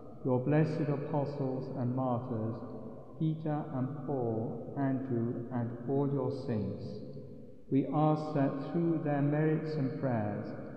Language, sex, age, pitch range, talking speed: English, male, 60-79, 120-145 Hz, 115 wpm